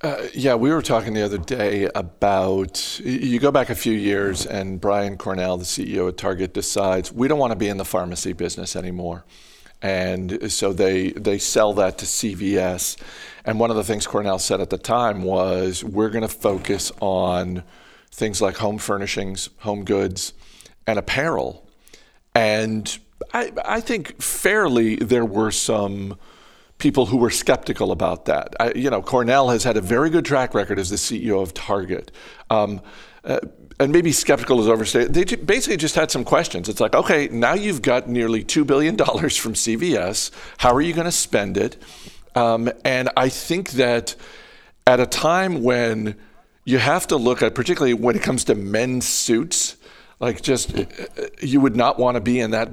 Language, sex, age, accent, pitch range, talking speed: English, male, 50-69, American, 95-125 Hz, 180 wpm